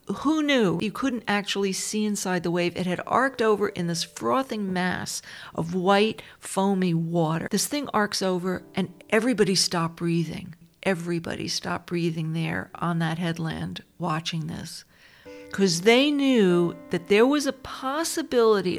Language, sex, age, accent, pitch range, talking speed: English, female, 50-69, American, 175-225 Hz, 145 wpm